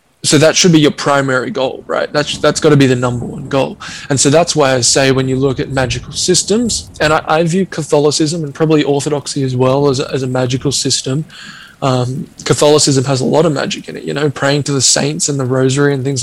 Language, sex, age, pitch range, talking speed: English, male, 10-29, 130-150 Hz, 235 wpm